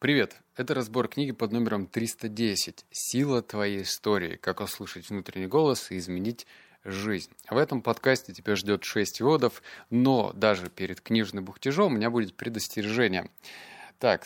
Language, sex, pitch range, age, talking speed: Russian, male, 105-140 Hz, 30-49, 145 wpm